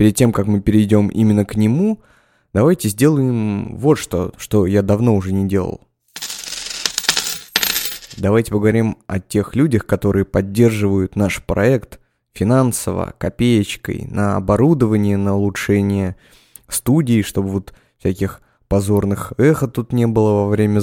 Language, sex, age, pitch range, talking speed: Russian, male, 20-39, 100-120 Hz, 125 wpm